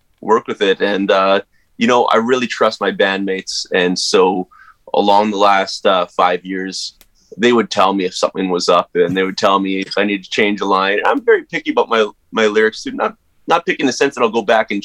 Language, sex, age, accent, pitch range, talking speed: English, male, 20-39, American, 90-100 Hz, 240 wpm